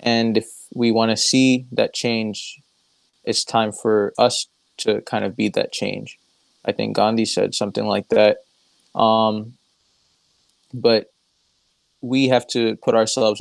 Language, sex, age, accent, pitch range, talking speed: English, male, 20-39, American, 105-120 Hz, 145 wpm